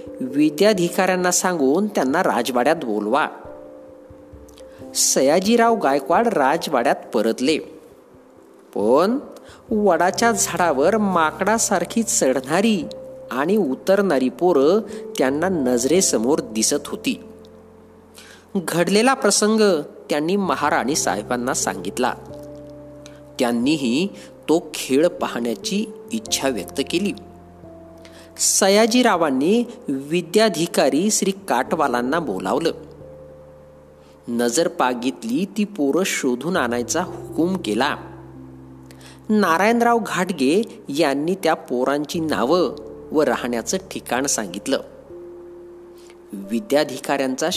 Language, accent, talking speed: Marathi, native, 70 wpm